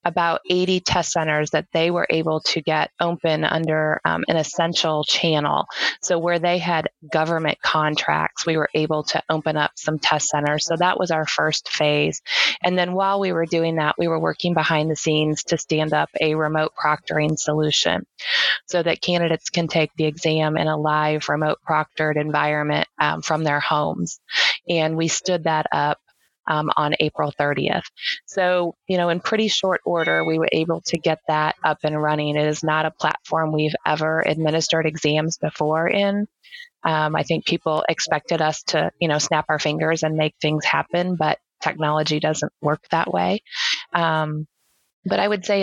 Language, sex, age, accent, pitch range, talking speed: English, female, 20-39, American, 155-175 Hz, 180 wpm